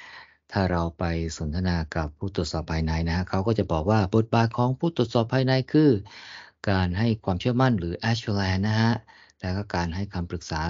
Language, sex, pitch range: Thai, male, 85-110 Hz